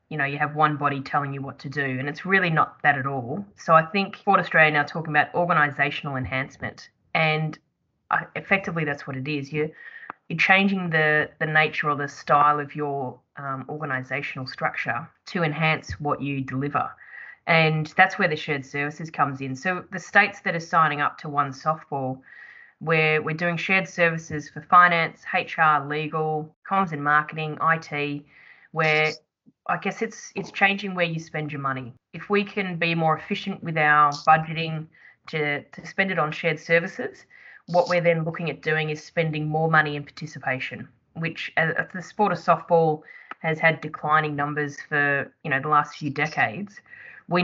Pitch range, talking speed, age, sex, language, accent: 145-170 Hz, 180 wpm, 20-39, female, English, Australian